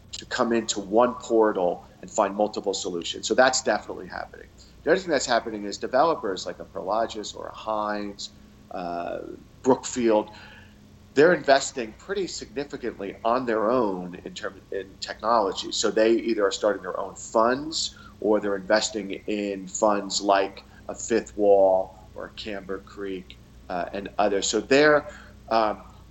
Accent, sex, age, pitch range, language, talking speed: American, male, 40-59, 105-120 Hz, English, 150 wpm